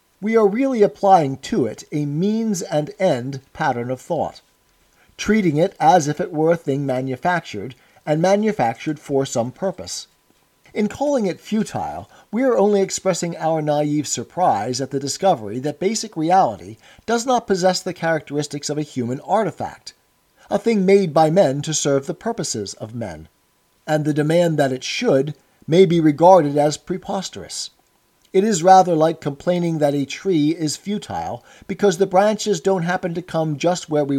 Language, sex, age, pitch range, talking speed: English, male, 50-69, 145-195 Hz, 165 wpm